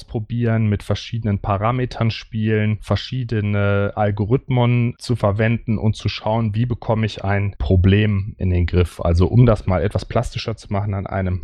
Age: 30-49